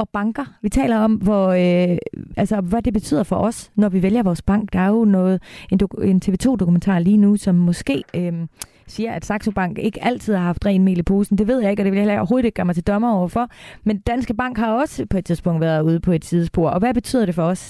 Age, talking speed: 30-49, 260 wpm